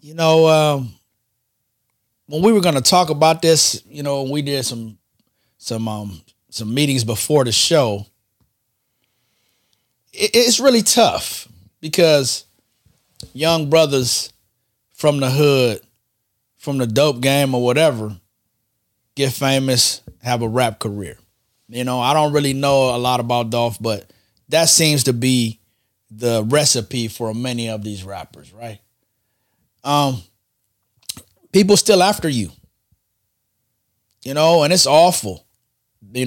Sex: male